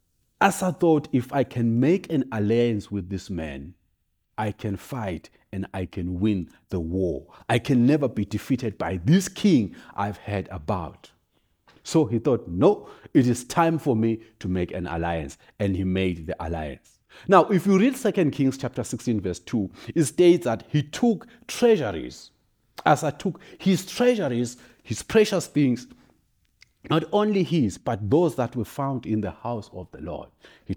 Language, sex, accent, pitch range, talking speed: English, male, South African, 95-140 Hz, 175 wpm